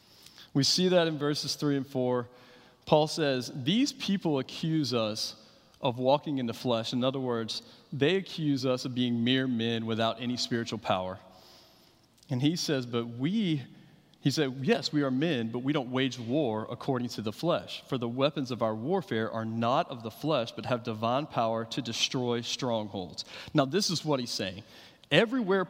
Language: English